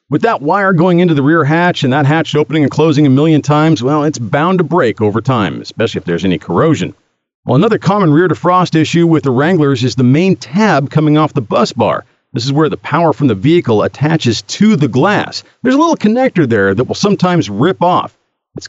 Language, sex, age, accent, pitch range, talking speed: English, male, 50-69, American, 130-180 Hz, 225 wpm